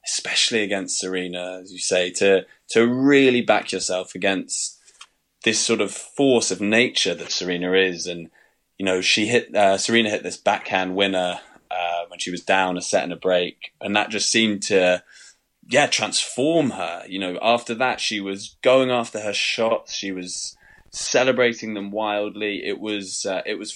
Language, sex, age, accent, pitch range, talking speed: English, male, 20-39, British, 95-125 Hz, 175 wpm